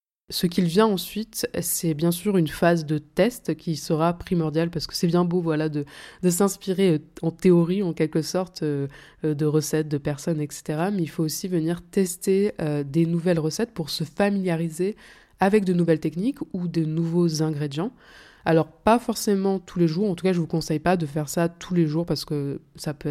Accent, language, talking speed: French, French, 200 wpm